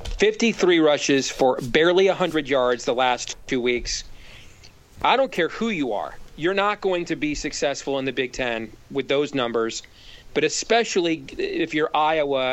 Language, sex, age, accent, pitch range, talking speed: English, male, 40-59, American, 135-180 Hz, 165 wpm